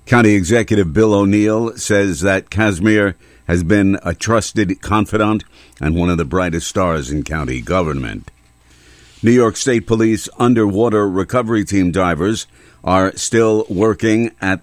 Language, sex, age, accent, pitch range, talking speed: English, male, 50-69, American, 85-100 Hz, 135 wpm